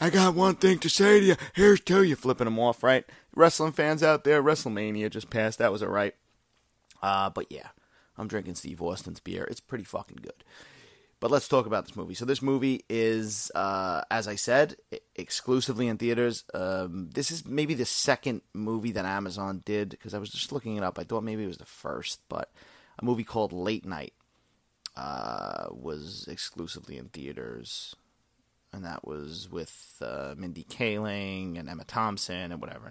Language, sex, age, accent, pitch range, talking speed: English, male, 30-49, American, 105-135 Hz, 185 wpm